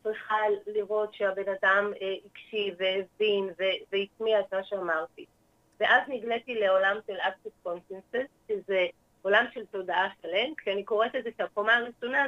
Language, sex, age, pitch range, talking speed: Hebrew, female, 30-49, 185-230 Hz, 135 wpm